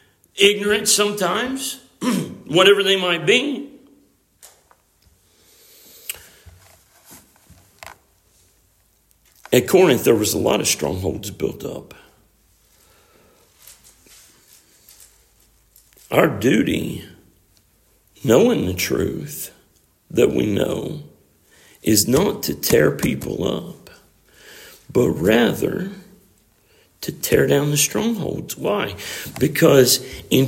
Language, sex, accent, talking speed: English, male, American, 80 wpm